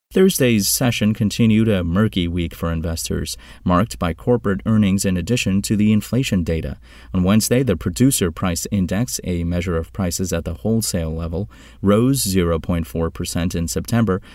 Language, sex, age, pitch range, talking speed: English, male, 30-49, 85-115 Hz, 150 wpm